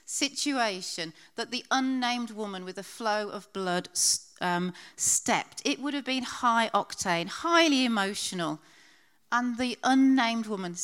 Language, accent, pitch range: English, British, 180-240 Hz